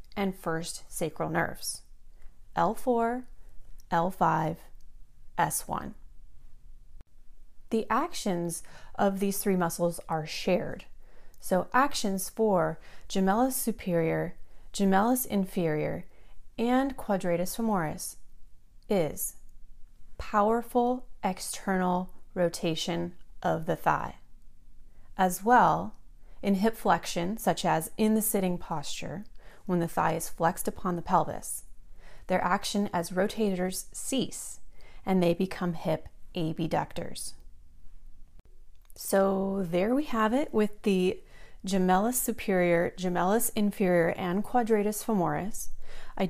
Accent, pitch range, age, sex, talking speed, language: American, 170-220 Hz, 30-49, female, 100 wpm, English